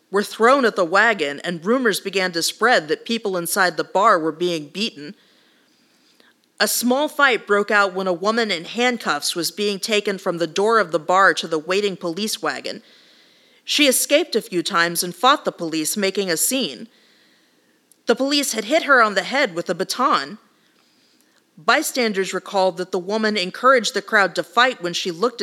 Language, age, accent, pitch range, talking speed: English, 40-59, American, 180-240 Hz, 185 wpm